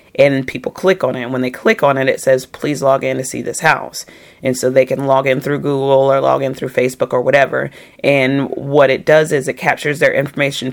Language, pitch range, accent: English, 135-160 Hz, American